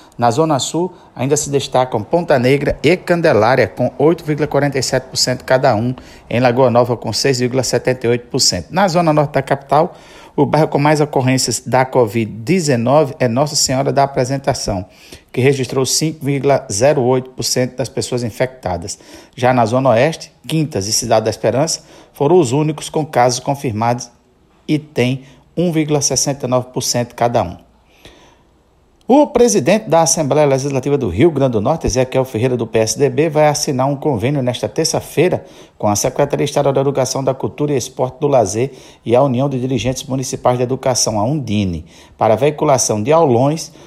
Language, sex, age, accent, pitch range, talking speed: Portuguese, male, 50-69, Brazilian, 125-150 Hz, 150 wpm